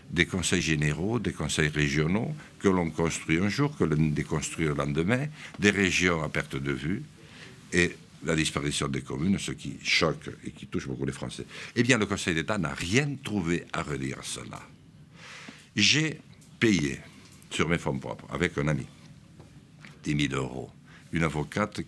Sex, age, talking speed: male, 60-79, 170 wpm